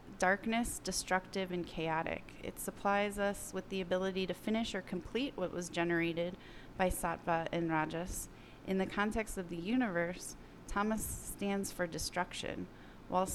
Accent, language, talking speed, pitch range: American, English, 145 wpm, 170-195 Hz